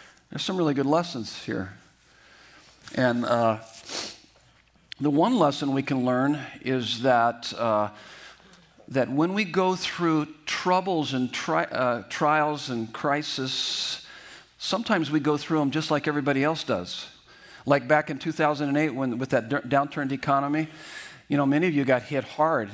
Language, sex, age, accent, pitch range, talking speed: English, male, 50-69, American, 135-175 Hz, 150 wpm